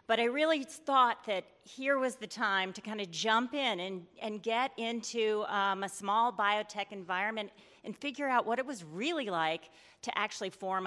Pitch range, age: 185-230 Hz, 40-59